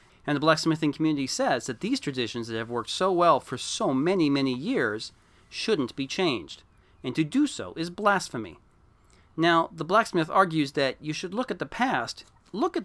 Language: English